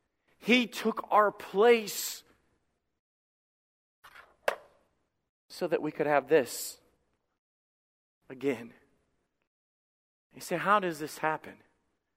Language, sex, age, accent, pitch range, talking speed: English, male, 40-59, American, 155-195 Hz, 85 wpm